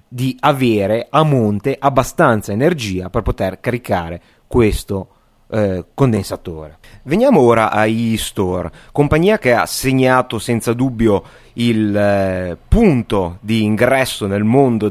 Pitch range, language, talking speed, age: 100-145 Hz, Italian, 115 wpm, 30-49